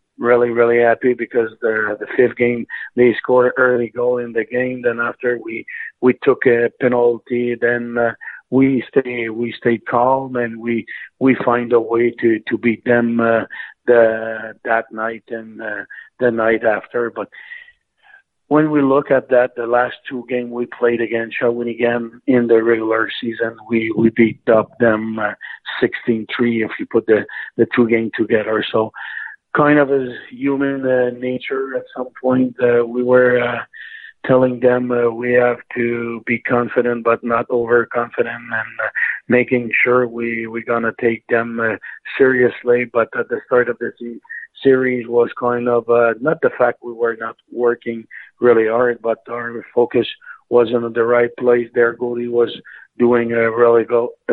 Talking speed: 170 wpm